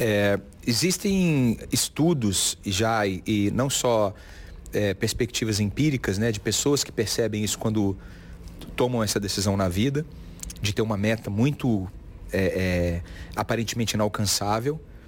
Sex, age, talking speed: male, 40-59, 110 wpm